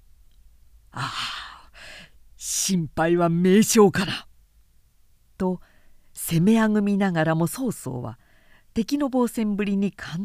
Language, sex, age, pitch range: Japanese, female, 50-69, 135-215 Hz